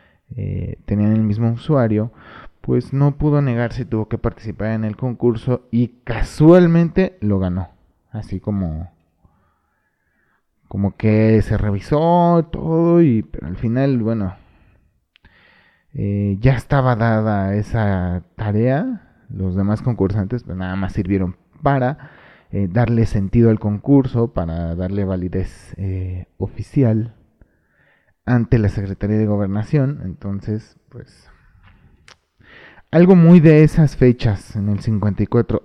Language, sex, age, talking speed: Spanish, male, 30-49, 115 wpm